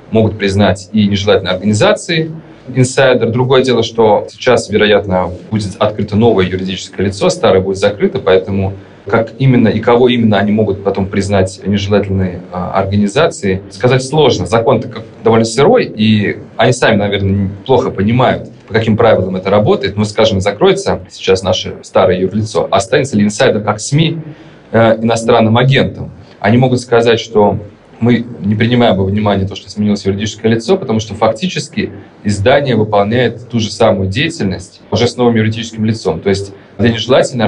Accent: native